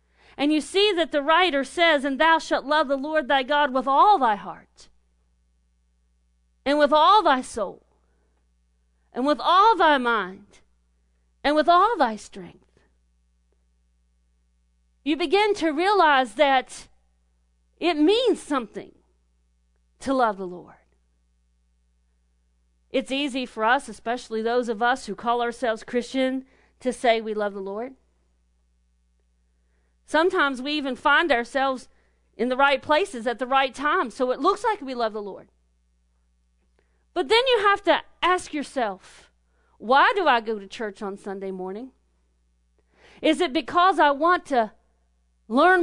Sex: female